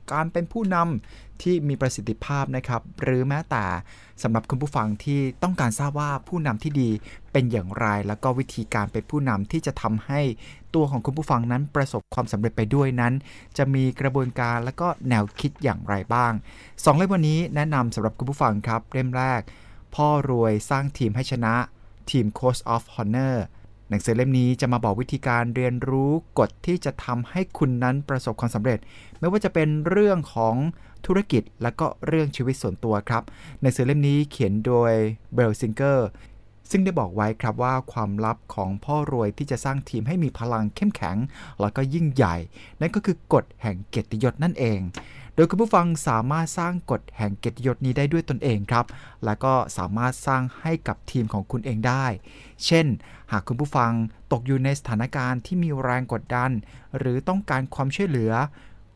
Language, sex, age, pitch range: Thai, male, 20-39, 110-145 Hz